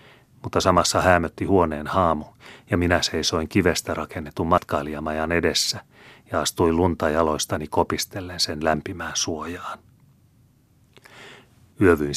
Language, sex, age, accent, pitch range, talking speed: Finnish, male, 30-49, native, 80-90 Hz, 105 wpm